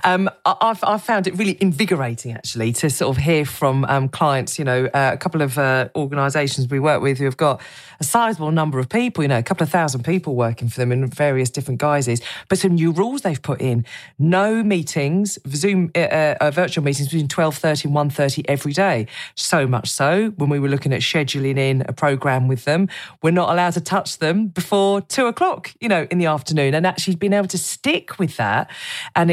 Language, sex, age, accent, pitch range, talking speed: English, female, 40-59, British, 140-185 Hz, 215 wpm